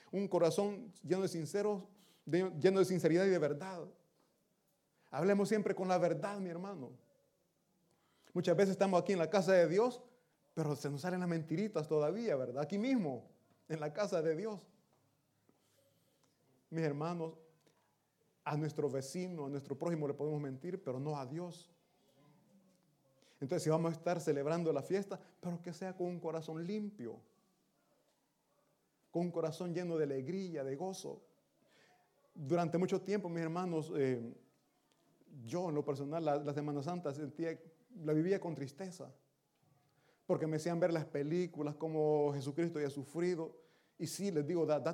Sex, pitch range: male, 150-185 Hz